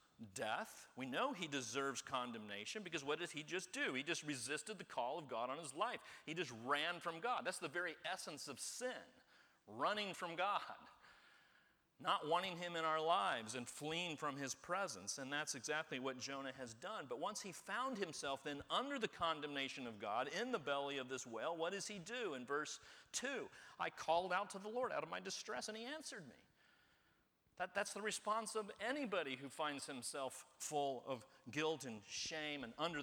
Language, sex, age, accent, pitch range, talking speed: English, male, 40-59, American, 140-195 Hz, 195 wpm